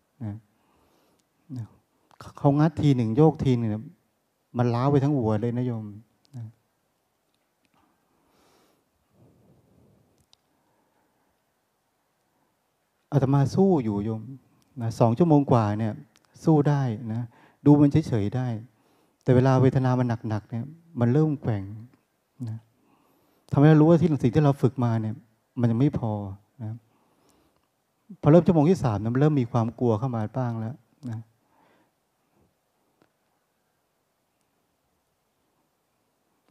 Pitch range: 115-140 Hz